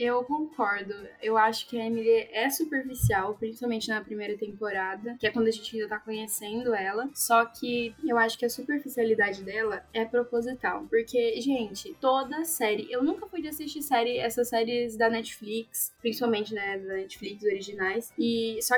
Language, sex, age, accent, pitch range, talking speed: Portuguese, female, 10-29, Brazilian, 225-270 Hz, 165 wpm